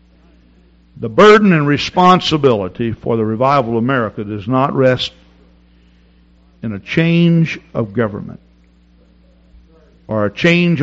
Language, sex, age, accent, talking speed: English, male, 60-79, American, 110 wpm